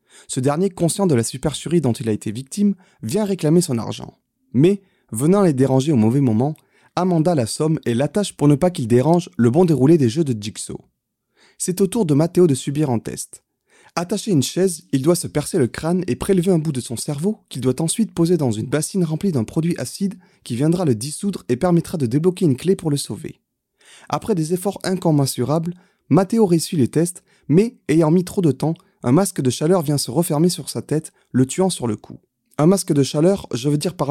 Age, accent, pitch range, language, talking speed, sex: 30-49, French, 135-185 Hz, French, 220 wpm, male